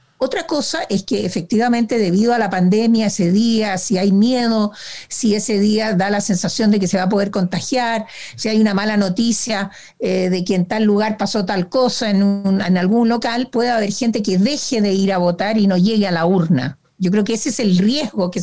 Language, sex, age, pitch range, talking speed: Spanish, female, 50-69, 185-235 Hz, 220 wpm